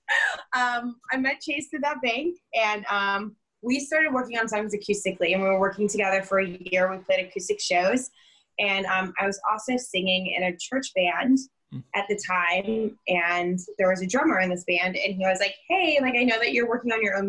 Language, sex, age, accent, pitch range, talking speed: English, female, 10-29, American, 185-240 Hz, 215 wpm